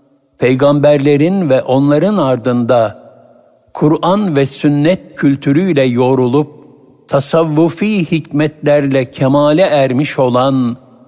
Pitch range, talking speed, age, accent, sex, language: 120-150 Hz, 75 wpm, 60-79, native, male, Turkish